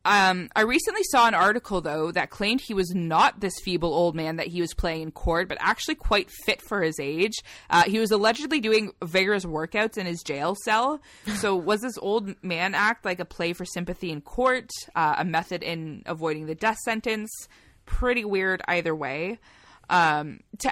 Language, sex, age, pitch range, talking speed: English, female, 20-39, 170-210 Hz, 195 wpm